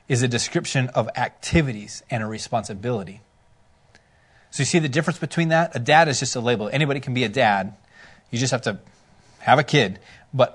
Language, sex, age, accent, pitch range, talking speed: English, male, 30-49, American, 125-165 Hz, 195 wpm